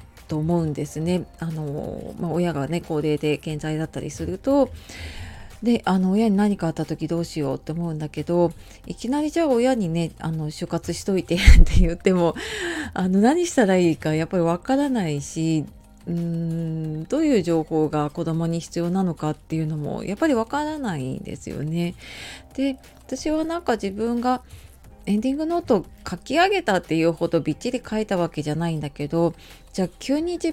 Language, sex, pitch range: Japanese, female, 155-240 Hz